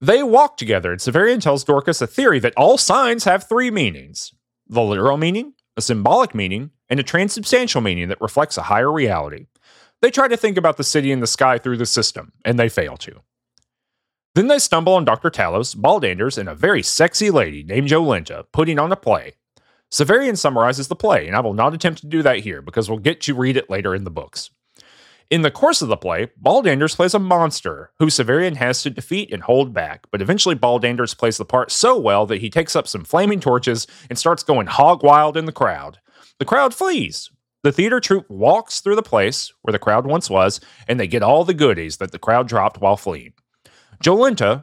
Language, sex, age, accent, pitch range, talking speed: English, male, 30-49, American, 115-175 Hz, 210 wpm